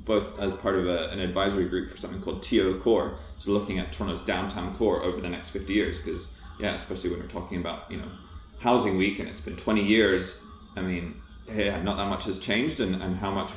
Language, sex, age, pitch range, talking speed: English, male, 20-39, 85-105 Hz, 230 wpm